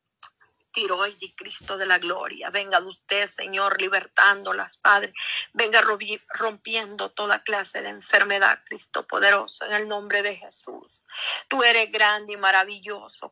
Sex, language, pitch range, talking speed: female, Spanish, 200-225 Hz, 135 wpm